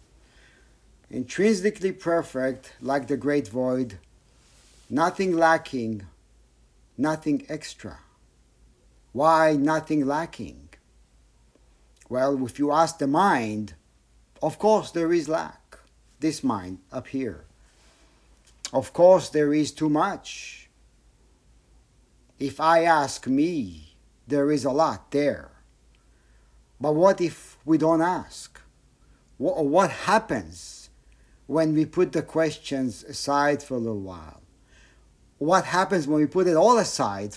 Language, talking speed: English, 110 wpm